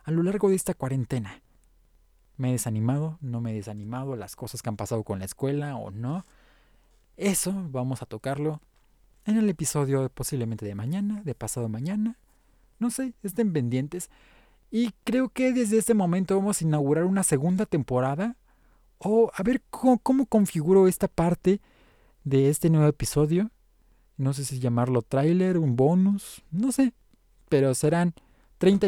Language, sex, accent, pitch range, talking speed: Spanish, male, Mexican, 125-185 Hz, 155 wpm